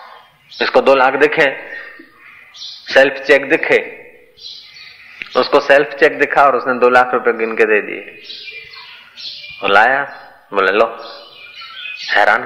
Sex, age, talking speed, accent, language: male, 30-49, 115 wpm, native, Hindi